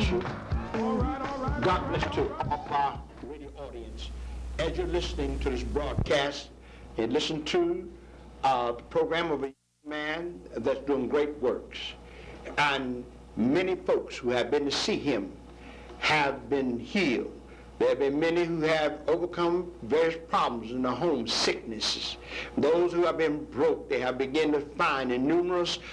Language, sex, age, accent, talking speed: English, male, 60-79, American, 145 wpm